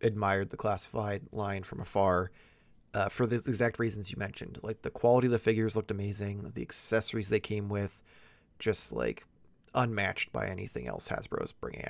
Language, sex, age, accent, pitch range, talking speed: English, male, 20-39, American, 100-120 Hz, 175 wpm